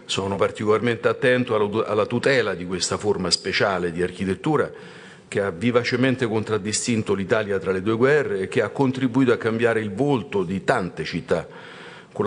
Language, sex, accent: Italian, male, native